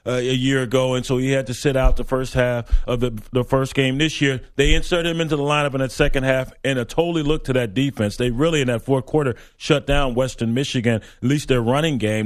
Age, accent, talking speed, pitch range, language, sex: 30-49, American, 255 wpm, 125-145 Hz, English, male